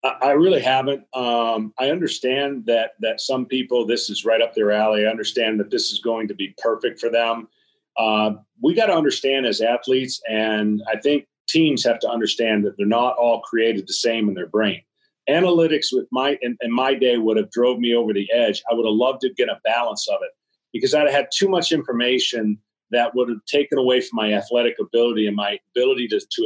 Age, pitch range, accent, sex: 40-59, 115-145 Hz, American, male